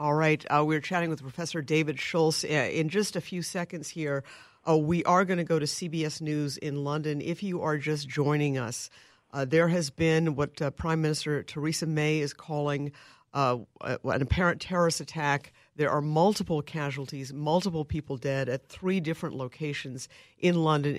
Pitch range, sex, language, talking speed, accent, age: 135-160 Hz, female, English, 175 wpm, American, 50-69